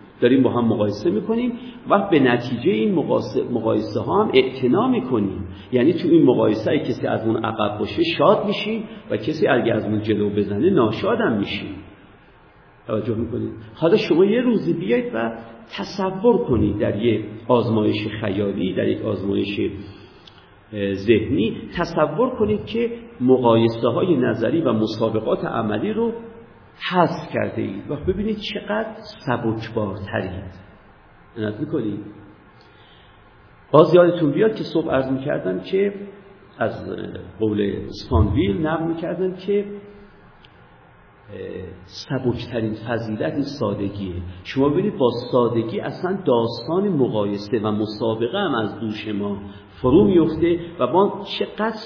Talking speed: 130 wpm